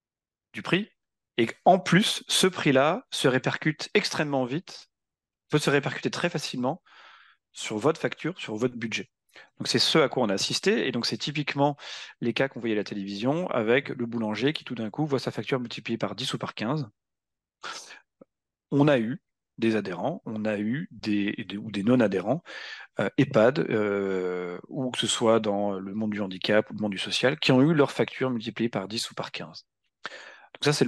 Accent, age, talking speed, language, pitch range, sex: French, 40-59, 195 wpm, French, 110-140 Hz, male